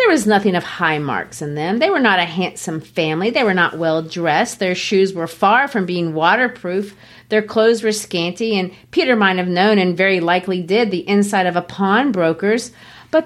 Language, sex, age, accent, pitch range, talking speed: English, female, 40-59, American, 180-235 Hz, 200 wpm